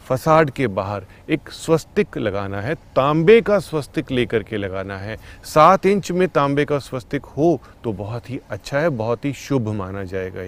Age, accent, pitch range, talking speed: 30-49, native, 105-160 Hz, 180 wpm